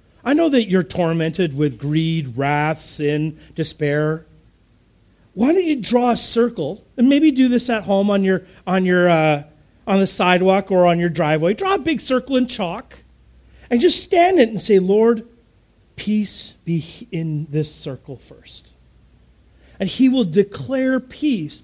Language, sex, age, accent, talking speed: English, male, 40-59, American, 160 wpm